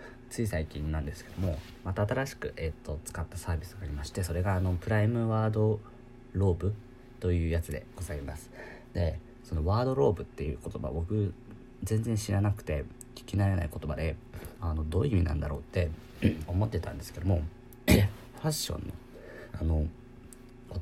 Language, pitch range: Japanese, 85-120 Hz